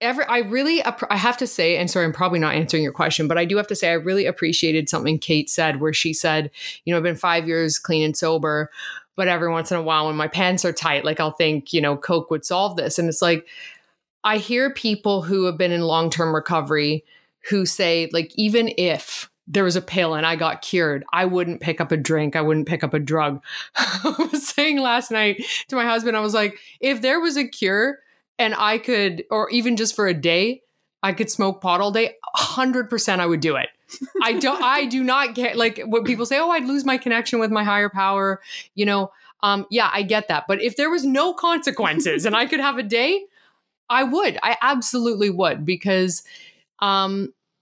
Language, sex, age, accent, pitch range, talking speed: English, female, 20-39, American, 165-235 Hz, 220 wpm